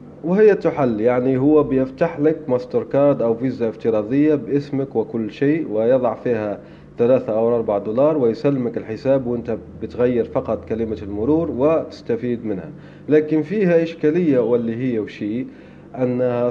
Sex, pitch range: male, 115-150 Hz